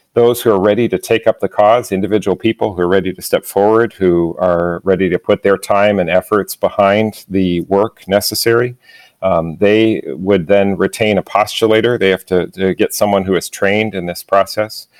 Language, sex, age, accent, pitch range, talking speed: English, male, 40-59, American, 95-105 Hz, 195 wpm